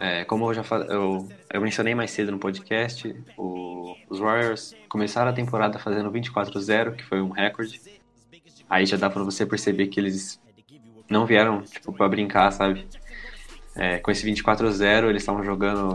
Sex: male